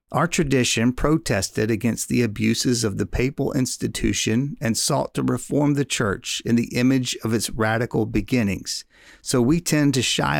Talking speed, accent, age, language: 160 wpm, American, 50-69, English